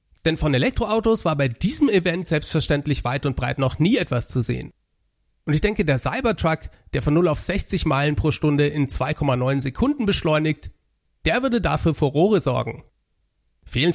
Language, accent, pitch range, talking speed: German, German, 135-185 Hz, 170 wpm